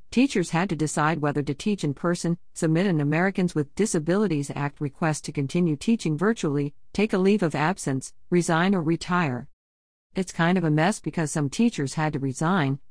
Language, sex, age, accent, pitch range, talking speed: English, female, 50-69, American, 145-185 Hz, 180 wpm